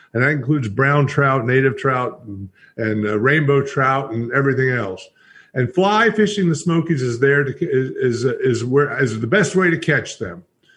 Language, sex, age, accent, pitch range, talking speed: English, male, 50-69, American, 140-185 Hz, 195 wpm